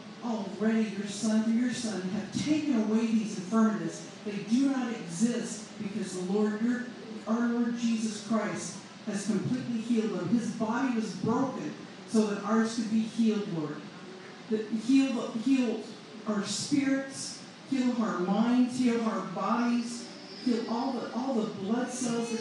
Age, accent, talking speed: 50-69, American, 155 wpm